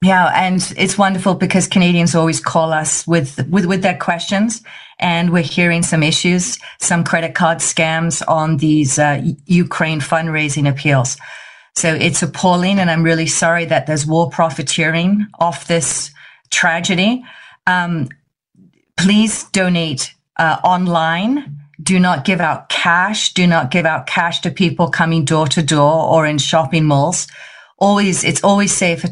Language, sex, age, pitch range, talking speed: English, female, 40-59, 155-180 Hz, 150 wpm